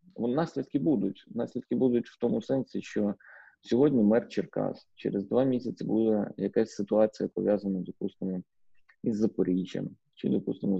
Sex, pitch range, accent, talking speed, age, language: male, 100-130 Hz, native, 130 wpm, 30-49, Ukrainian